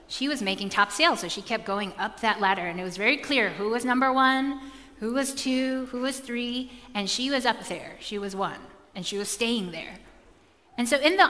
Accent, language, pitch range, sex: American, English, 190-245 Hz, female